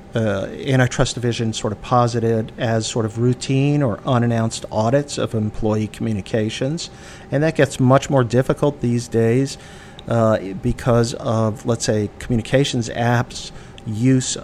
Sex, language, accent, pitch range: male, English, American, 110-125 Hz